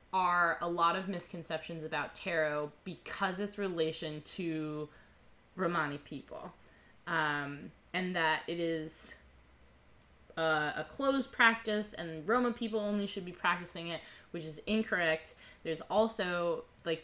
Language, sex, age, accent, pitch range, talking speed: English, female, 20-39, American, 160-195 Hz, 125 wpm